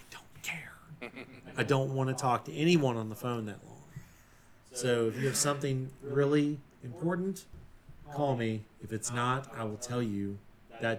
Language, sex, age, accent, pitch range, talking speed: English, male, 40-59, American, 110-140 Hz, 160 wpm